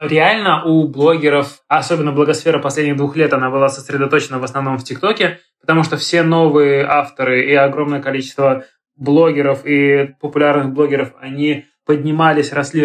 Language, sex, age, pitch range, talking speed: Russian, male, 20-39, 140-165 Hz, 140 wpm